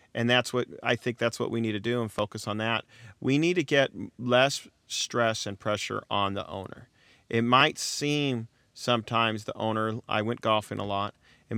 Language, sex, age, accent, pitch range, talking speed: English, male, 40-59, American, 110-130 Hz, 195 wpm